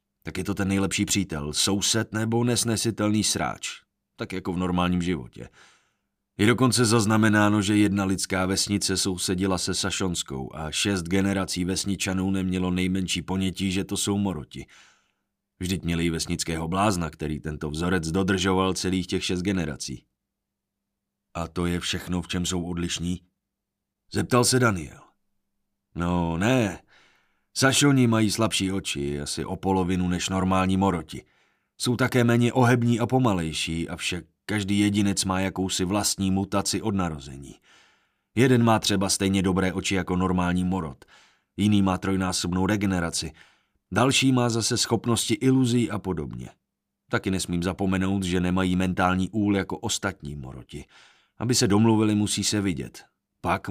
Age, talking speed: 30-49, 140 wpm